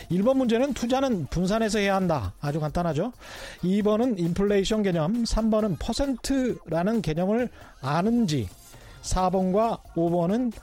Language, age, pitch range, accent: Korean, 40-59, 165-230 Hz, native